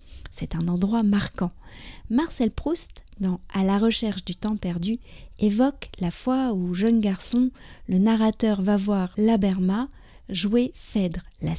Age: 30-49